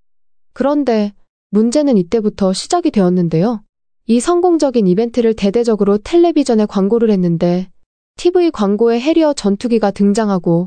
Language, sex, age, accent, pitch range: Korean, female, 20-39, native, 190-275 Hz